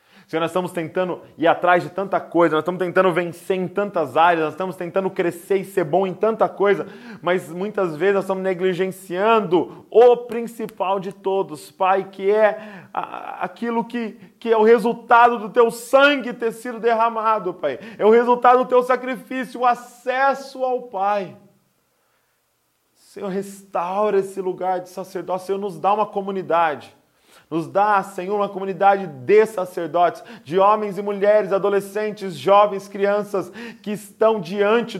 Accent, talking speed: Brazilian, 155 wpm